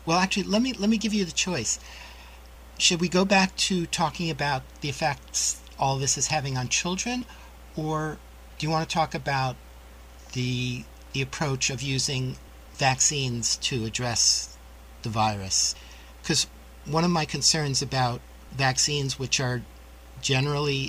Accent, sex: American, male